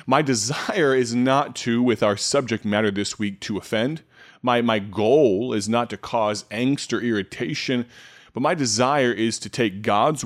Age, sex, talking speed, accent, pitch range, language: 30-49, male, 175 wpm, American, 110-140 Hz, English